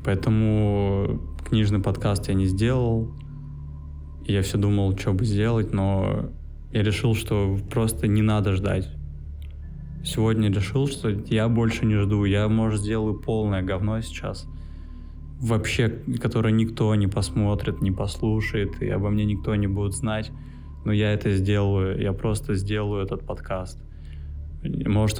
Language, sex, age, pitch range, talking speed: Russian, male, 20-39, 80-110 Hz, 135 wpm